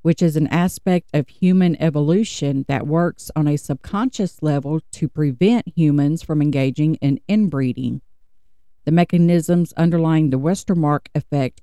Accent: American